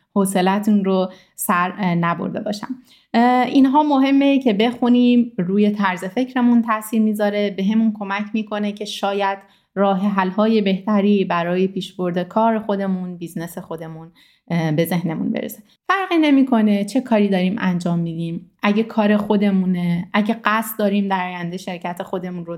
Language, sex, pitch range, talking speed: Persian, female, 175-215 Hz, 135 wpm